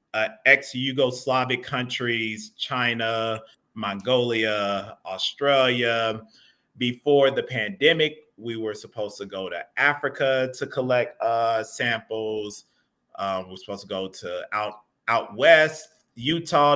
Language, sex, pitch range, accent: English, male, 110-140 Hz, American